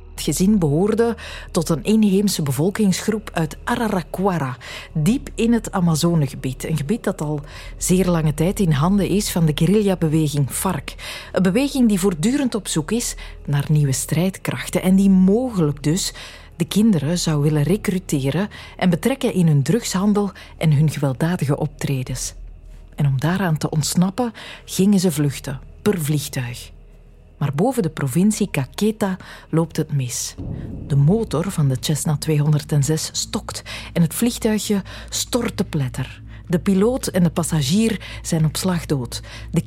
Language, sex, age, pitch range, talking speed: Dutch, female, 40-59, 145-200 Hz, 145 wpm